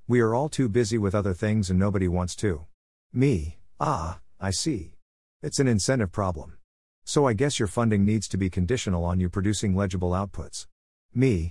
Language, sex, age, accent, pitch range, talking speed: English, male, 50-69, American, 90-115 Hz, 180 wpm